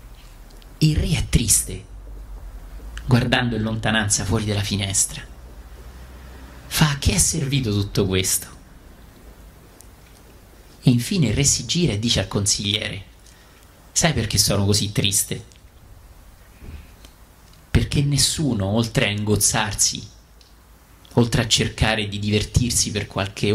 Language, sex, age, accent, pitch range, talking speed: Italian, male, 30-49, native, 85-120 Hz, 110 wpm